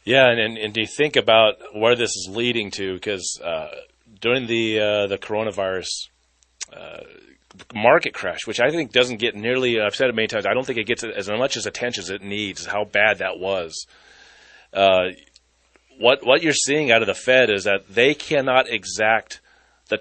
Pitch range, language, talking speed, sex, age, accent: 105-130 Hz, English, 190 wpm, male, 30-49, American